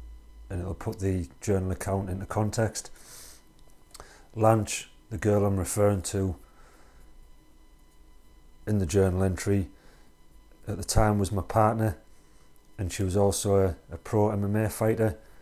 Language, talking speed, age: English, 130 wpm, 40-59